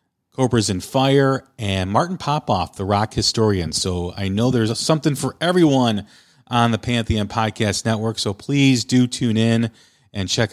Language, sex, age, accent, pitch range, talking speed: English, male, 40-59, American, 100-130 Hz, 160 wpm